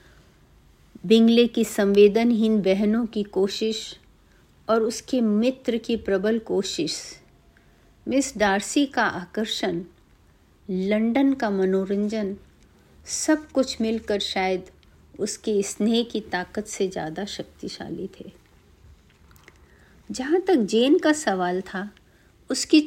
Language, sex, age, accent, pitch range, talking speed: Hindi, female, 50-69, native, 190-240 Hz, 100 wpm